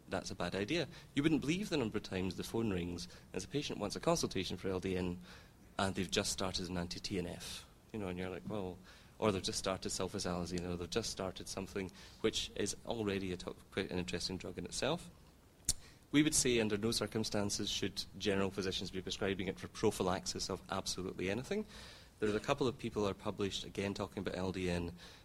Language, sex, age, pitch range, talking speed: English, male, 30-49, 95-110 Hz, 195 wpm